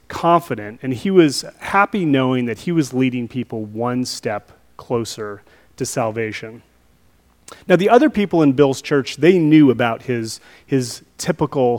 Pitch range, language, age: 115-165 Hz, English, 30-49